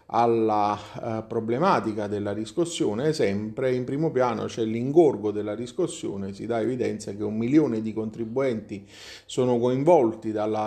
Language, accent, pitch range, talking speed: Italian, native, 105-120 Hz, 130 wpm